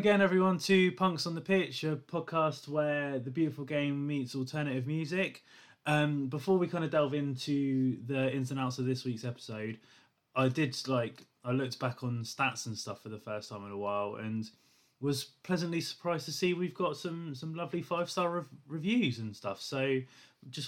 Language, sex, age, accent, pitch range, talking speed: English, male, 20-39, British, 125-150 Hz, 195 wpm